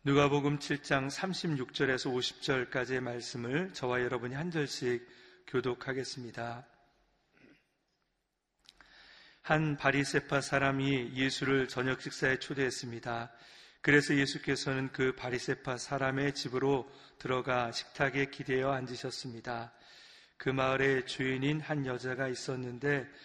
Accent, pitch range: native, 125-140 Hz